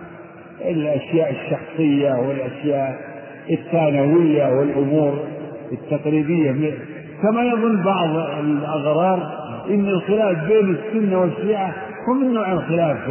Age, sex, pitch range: 50-69, male, 140-180 Hz